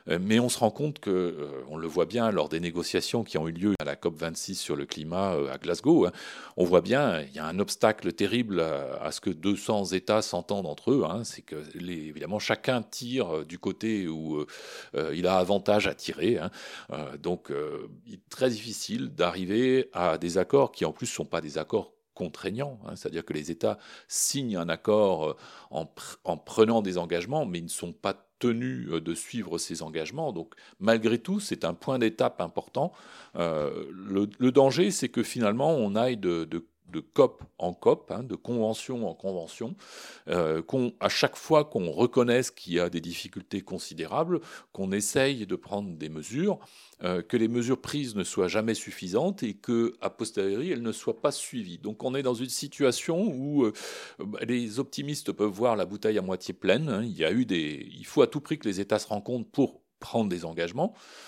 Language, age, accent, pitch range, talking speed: French, 40-59, French, 90-125 Hz, 195 wpm